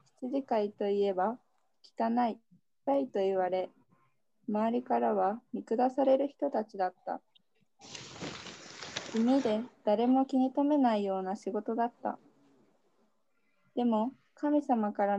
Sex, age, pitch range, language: female, 20-39, 210-265 Hz, Japanese